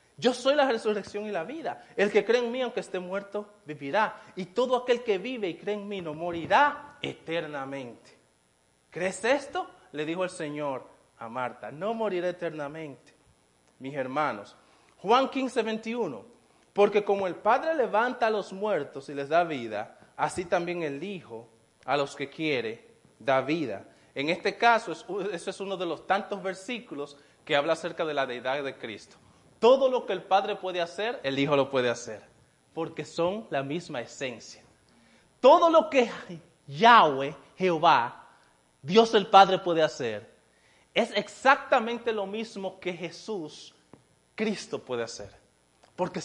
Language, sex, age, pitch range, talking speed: English, male, 30-49, 145-230 Hz, 155 wpm